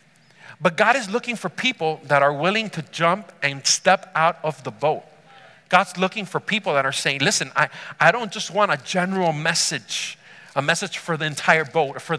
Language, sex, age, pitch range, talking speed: English, male, 40-59, 160-205 Hz, 195 wpm